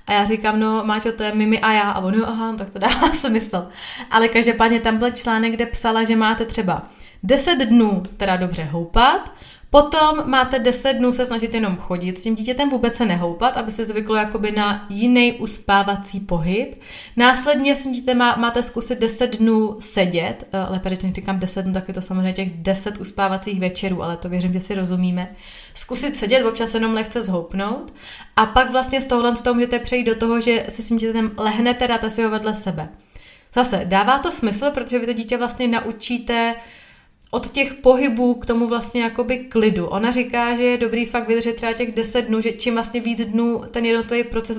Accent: native